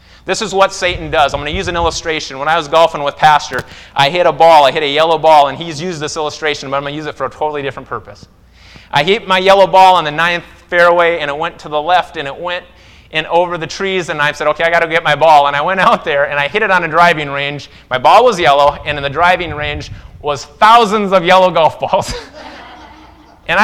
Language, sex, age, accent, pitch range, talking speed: English, male, 30-49, American, 125-175 Hz, 265 wpm